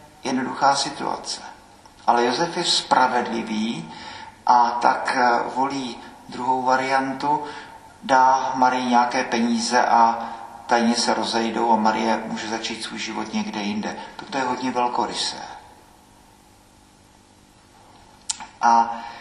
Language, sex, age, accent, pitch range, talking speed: Czech, male, 50-69, native, 115-130 Hz, 100 wpm